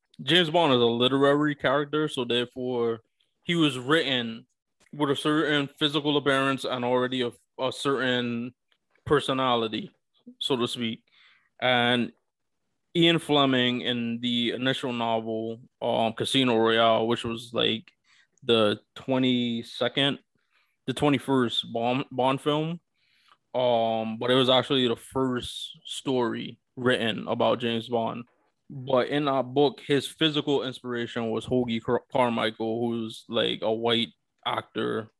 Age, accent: 20-39, American